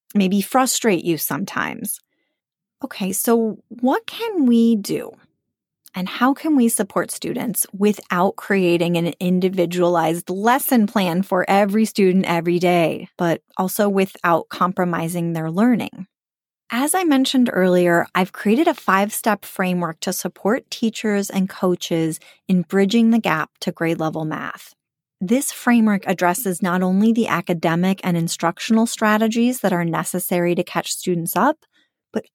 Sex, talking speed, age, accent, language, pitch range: female, 135 wpm, 30-49, American, English, 175-225 Hz